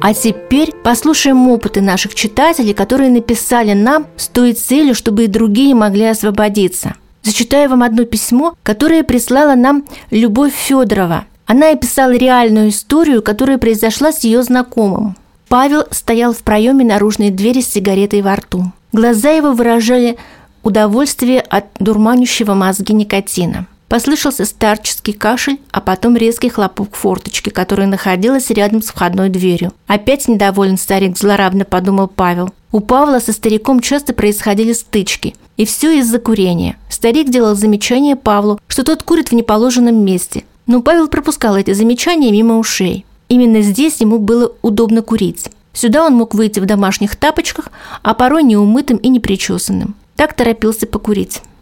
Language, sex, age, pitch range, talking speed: Russian, female, 40-59, 205-255 Hz, 145 wpm